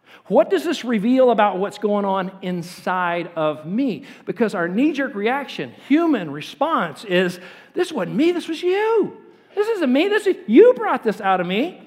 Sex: male